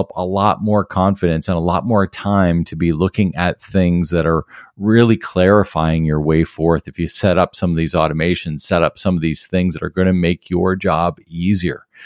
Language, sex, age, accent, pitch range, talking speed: English, male, 40-59, American, 85-115 Hz, 215 wpm